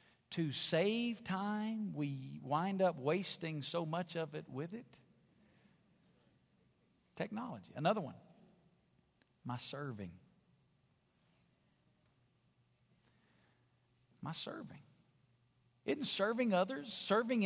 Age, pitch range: 50-69, 150-225 Hz